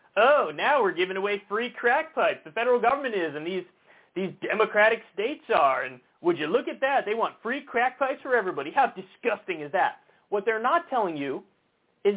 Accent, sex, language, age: American, male, English, 30-49